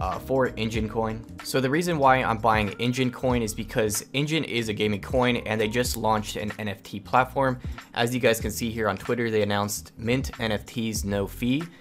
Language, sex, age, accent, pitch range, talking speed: English, male, 10-29, American, 105-125 Hz, 205 wpm